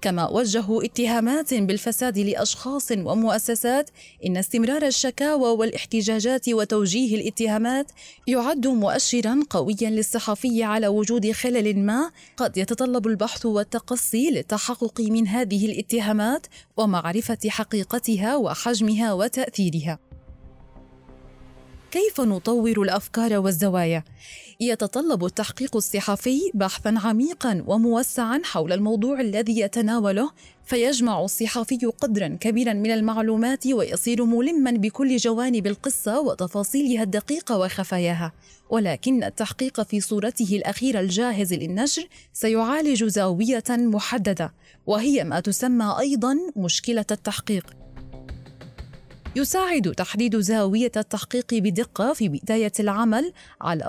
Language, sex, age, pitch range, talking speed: Arabic, female, 20-39, 205-245 Hz, 95 wpm